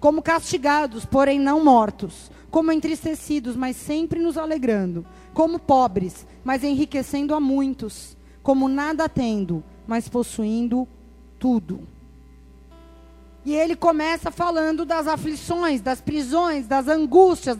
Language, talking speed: Portuguese, 115 wpm